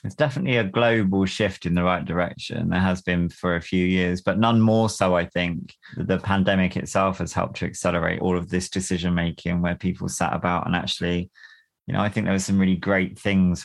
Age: 20-39